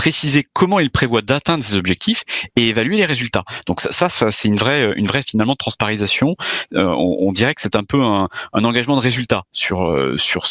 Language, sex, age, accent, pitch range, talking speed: French, male, 30-49, French, 95-130 Hz, 215 wpm